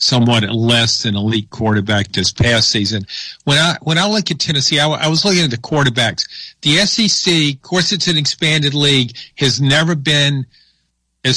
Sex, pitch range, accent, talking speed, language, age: male, 120-155 Hz, American, 185 wpm, English, 50-69